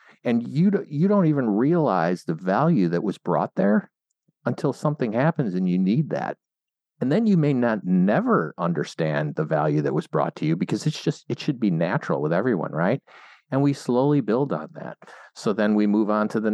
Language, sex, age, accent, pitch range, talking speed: English, male, 50-69, American, 90-145 Hz, 205 wpm